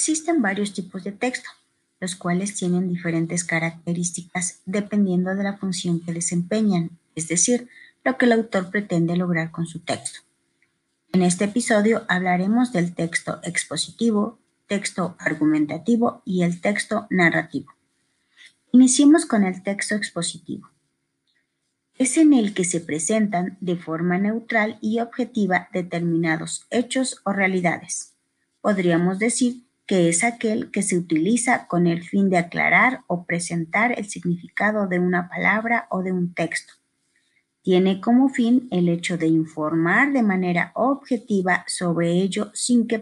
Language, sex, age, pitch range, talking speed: Spanish, female, 30-49, 170-220 Hz, 140 wpm